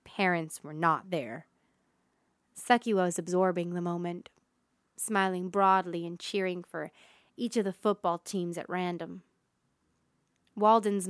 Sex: female